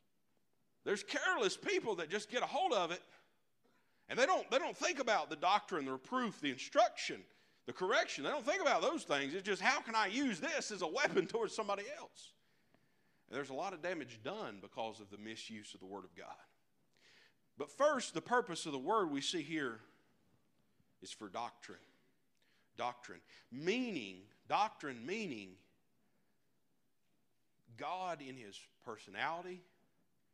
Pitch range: 130-215 Hz